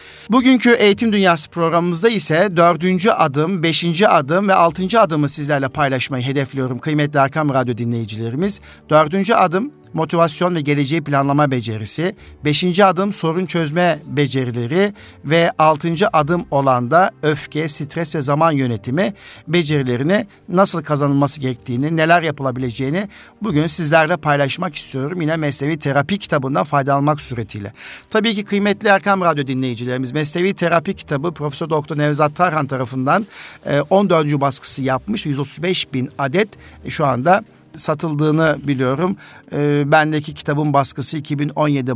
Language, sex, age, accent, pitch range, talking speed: Turkish, male, 60-79, native, 140-175 Hz, 120 wpm